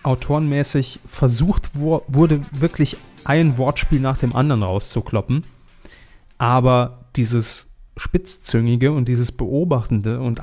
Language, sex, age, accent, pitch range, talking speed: German, male, 30-49, German, 110-135 Hz, 100 wpm